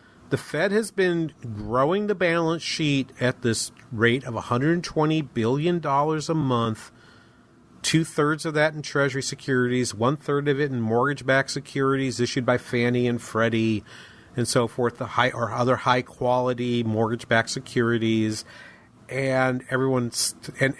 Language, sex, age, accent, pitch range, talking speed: English, male, 40-59, American, 115-150 Hz, 140 wpm